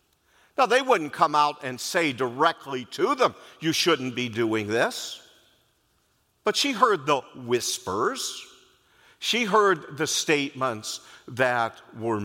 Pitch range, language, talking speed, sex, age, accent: 135-195 Hz, English, 125 wpm, male, 50-69, American